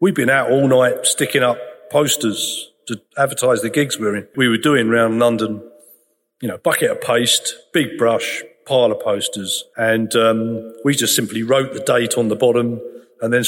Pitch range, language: 115-175 Hz, English